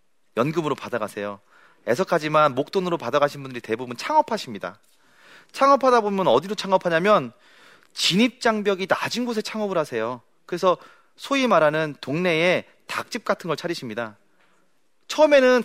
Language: Korean